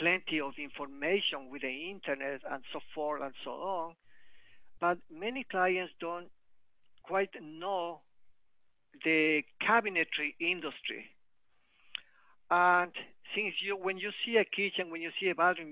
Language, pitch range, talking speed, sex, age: English, 150-195 Hz, 130 wpm, male, 50-69